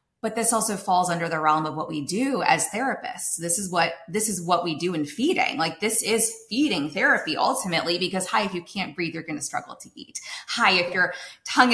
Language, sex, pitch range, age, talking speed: English, female, 175-220 Hz, 20-39, 230 wpm